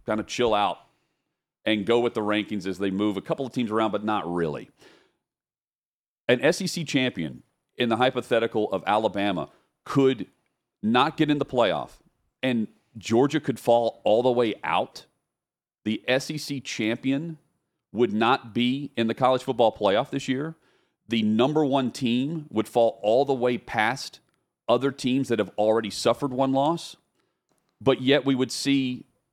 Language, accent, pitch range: English, American, 115-140 Hz